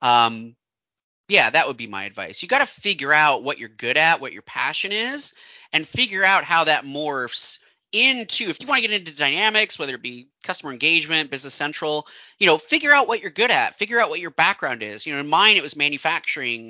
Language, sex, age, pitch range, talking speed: English, male, 30-49, 135-205 Hz, 225 wpm